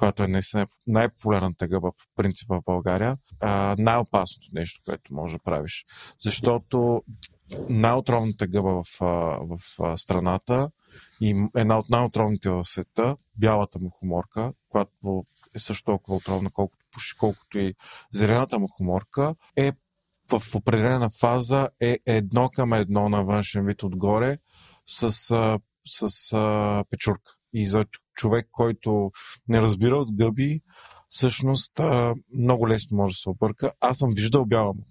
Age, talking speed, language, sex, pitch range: 40-59, 125 wpm, Bulgarian, male, 100-125 Hz